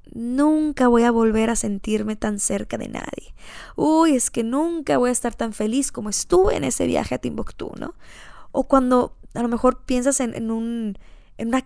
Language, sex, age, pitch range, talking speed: English, female, 20-39, 230-280 Hz, 195 wpm